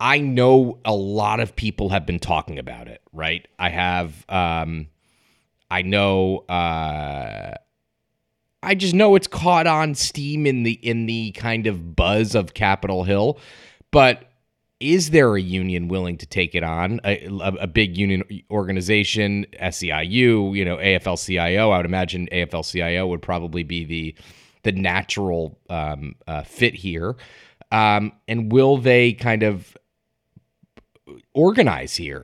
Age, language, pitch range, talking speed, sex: 30-49, English, 90-120 Hz, 145 wpm, male